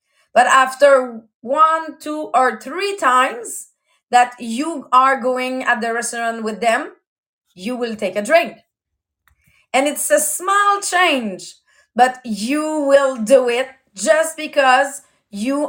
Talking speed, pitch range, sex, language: 130 wpm, 245-310 Hz, female, English